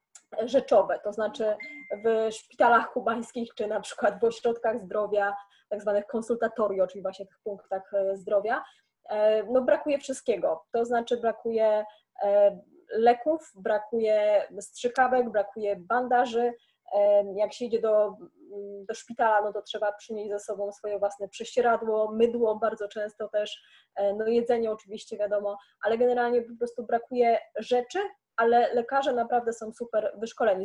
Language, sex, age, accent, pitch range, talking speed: Polish, female, 20-39, native, 205-245 Hz, 130 wpm